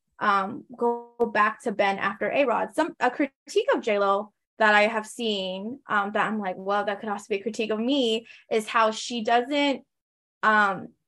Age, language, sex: 20-39, English, female